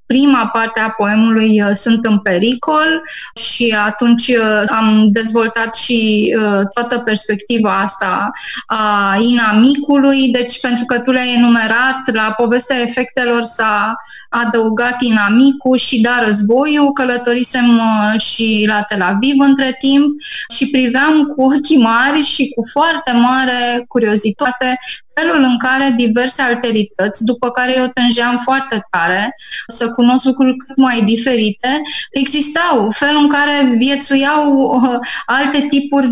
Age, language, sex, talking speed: 20-39, Romanian, female, 120 wpm